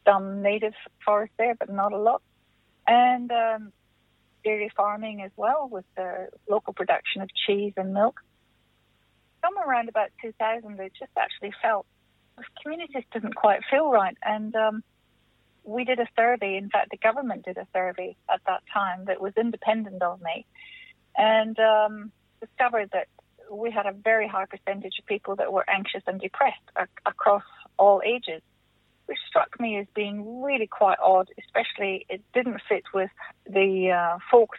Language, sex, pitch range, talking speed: English, female, 190-225 Hz, 165 wpm